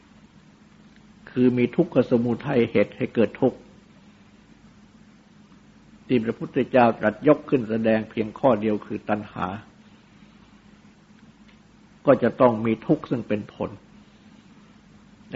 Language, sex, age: Thai, male, 60-79